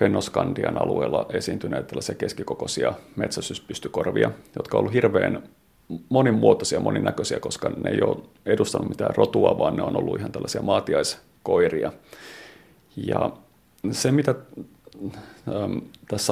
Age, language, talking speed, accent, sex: 30-49, Finnish, 110 wpm, native, male